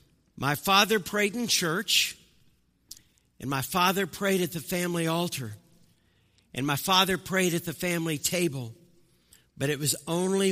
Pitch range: 130-175 Hz